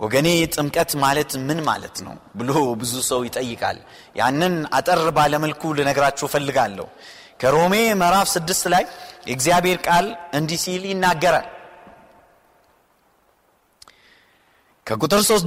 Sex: male